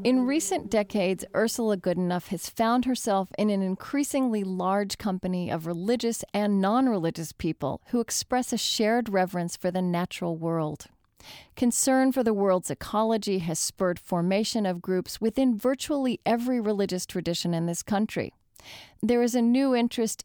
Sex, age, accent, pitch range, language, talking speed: female, 40-59, American, 180-240 Hz, English, 150 wpm